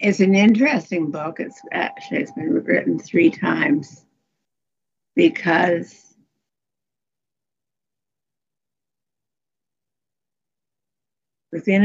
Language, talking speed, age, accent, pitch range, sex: English, 65 wpm, 60-79, American, 165-275 Hz, female